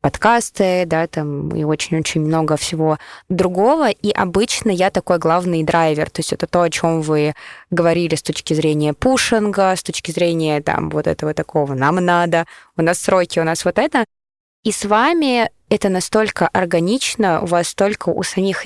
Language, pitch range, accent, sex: Russian, 170-200 Hz, native, female